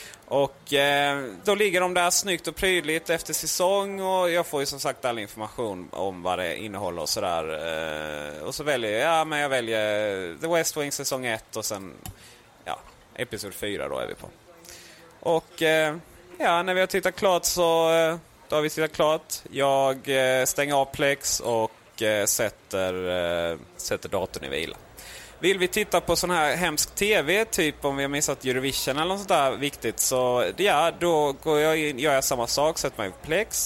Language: Swedish